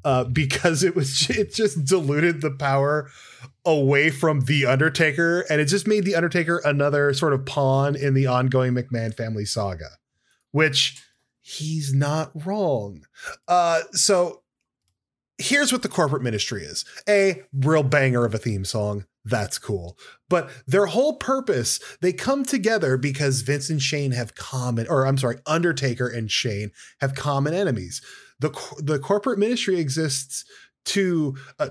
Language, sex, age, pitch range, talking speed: English, male, 20-39, 130-175 Hz, 150 wpm